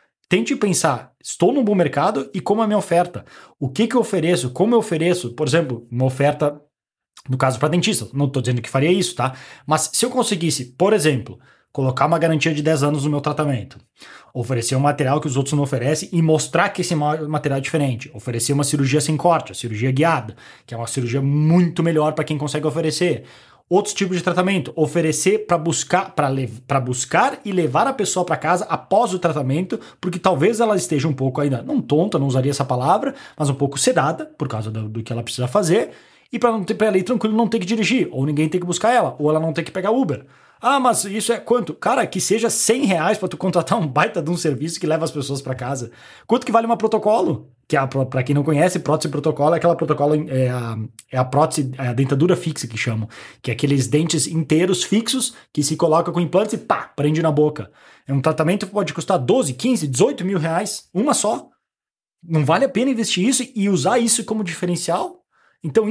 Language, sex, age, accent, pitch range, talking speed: Portuguese, male, 20-39, Brazilian, 140-185 Hz, 225 wpm